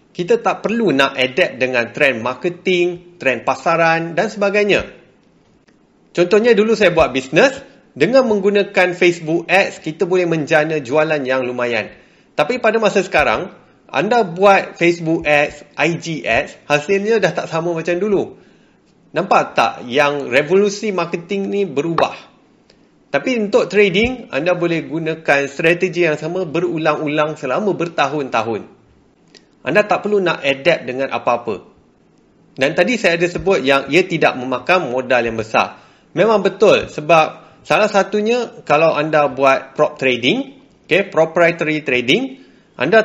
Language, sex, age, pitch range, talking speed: Malay, male, 30-49, 145-200 Hz, 130 wpm